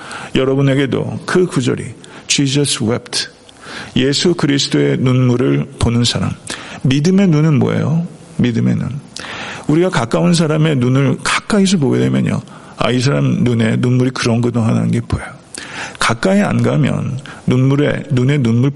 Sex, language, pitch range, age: male, Korean, 125-165 Hz, 50-69